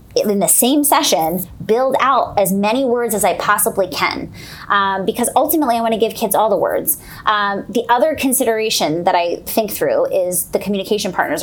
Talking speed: 190 wpm